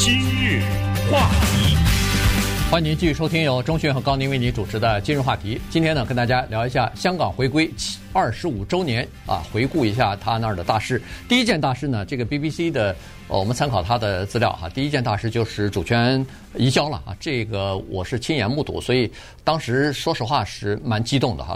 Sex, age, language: male, 50-69, Chinese